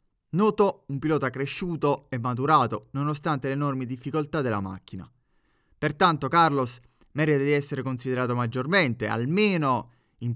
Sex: male